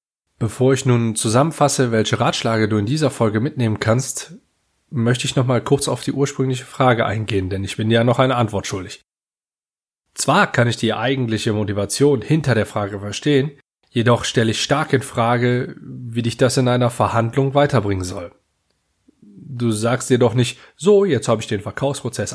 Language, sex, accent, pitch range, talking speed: German, male, German, 105-130 Hz, 170 wpm